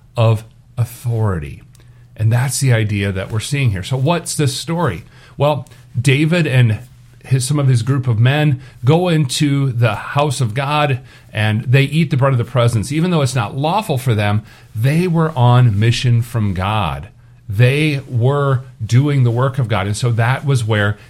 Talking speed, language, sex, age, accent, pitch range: 175 wpm, English, male, 40-59, American, 110-135 Hz